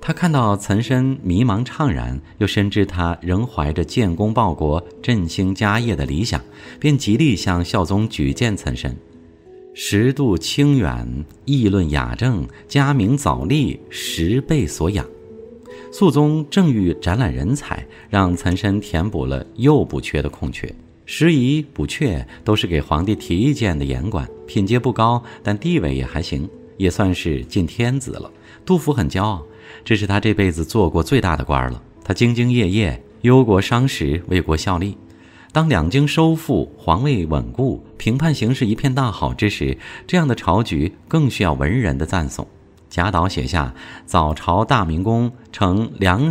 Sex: male